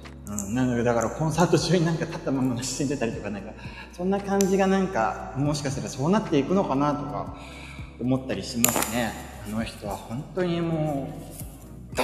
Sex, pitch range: male, 115-180 Hz